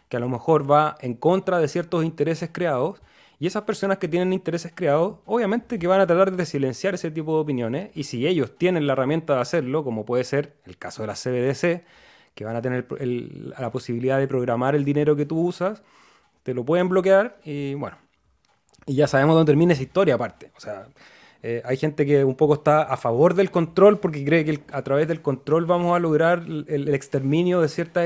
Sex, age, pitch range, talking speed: male, 30-49, 135-170 Hz, 220 wpm